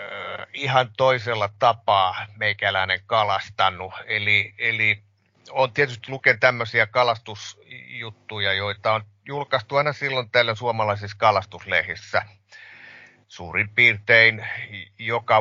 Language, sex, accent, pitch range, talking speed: Finnish, male, native, 105-130 Hz, 90 wpm